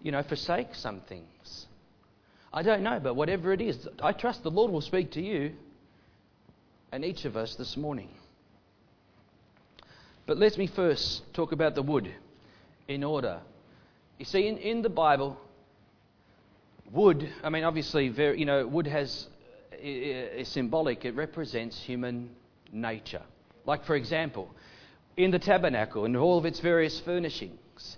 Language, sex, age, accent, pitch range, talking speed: English, male, 40-59, Australian, 120-160 Hz, 145 wpm